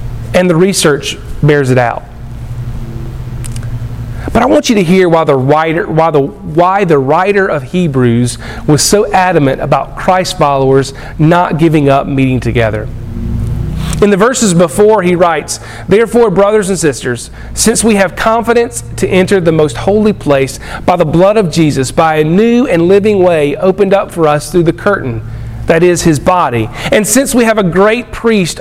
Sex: male